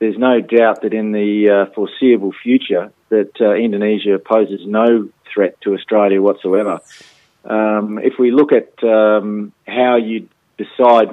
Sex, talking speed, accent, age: male, 145 wpm, Australian, 40-59